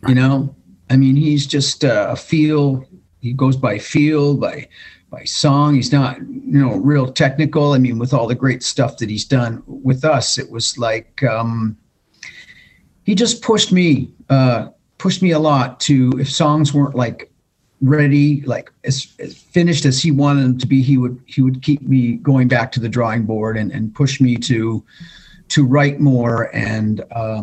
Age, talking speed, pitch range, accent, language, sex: 40-59, 185 wpm, 120-150 Hz, American, English, male